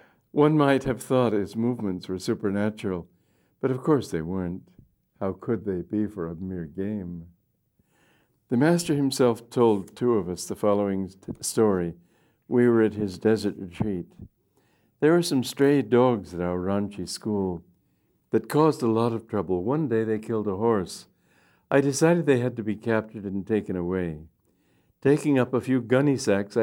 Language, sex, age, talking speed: English, male, 60-79, 170 wpm